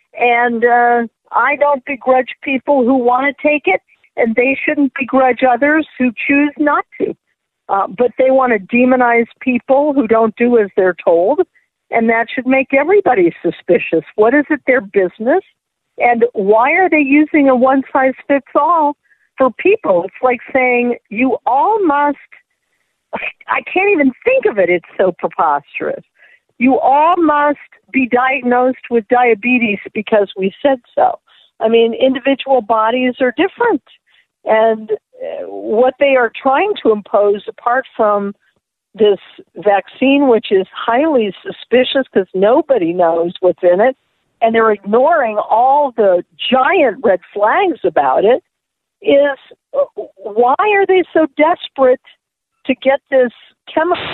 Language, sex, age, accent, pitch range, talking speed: English, female, 50-69, American, 225-285 Hz, 140 wpm